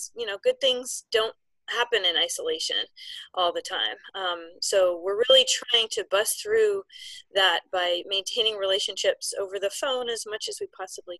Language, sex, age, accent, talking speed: English, female, 30-49, American, 165 wpm